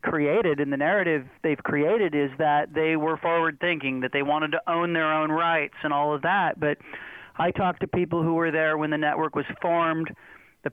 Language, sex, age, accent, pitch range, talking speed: English, male, 40-59, American, 155-175 Hz, 205 wpm